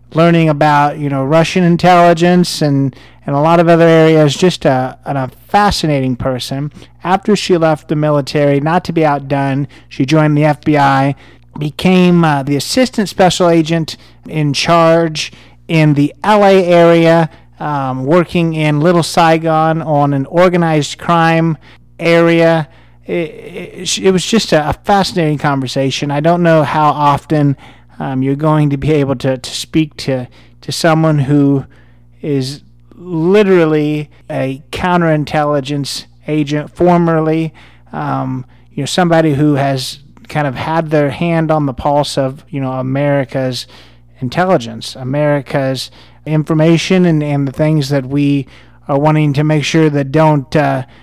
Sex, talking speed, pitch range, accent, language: male, 140 wpm, 140-165 Hz, American, English